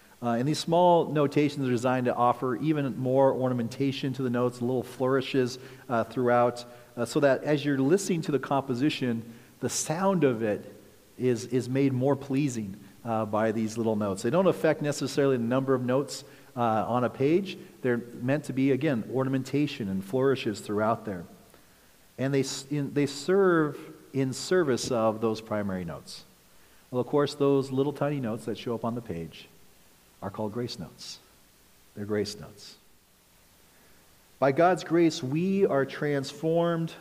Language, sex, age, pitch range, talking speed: English, male, 40-59, 115-145 Hz, 165 wpm